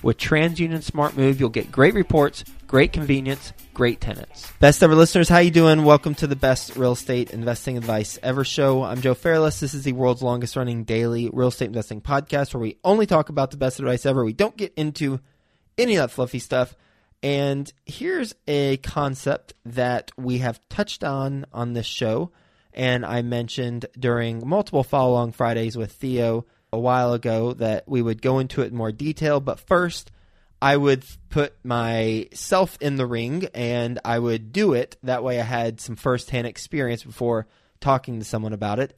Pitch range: 115-145 Hz